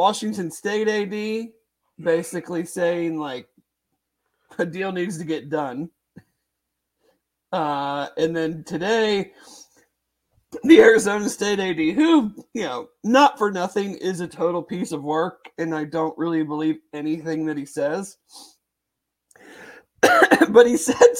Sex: male